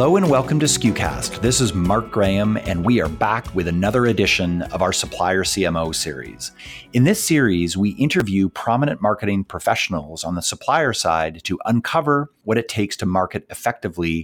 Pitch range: 85-115 Hz